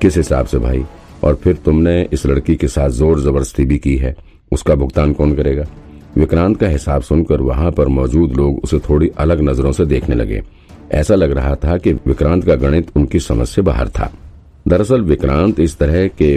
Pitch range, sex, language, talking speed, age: 65-80 Hz, male, Hindi, 195 wpm, 50-69